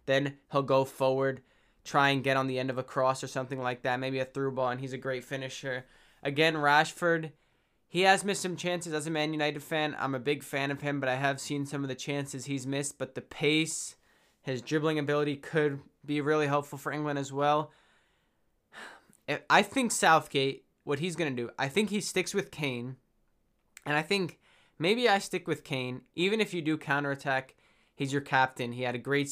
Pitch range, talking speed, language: 135-160 Hz, 210 wpm, English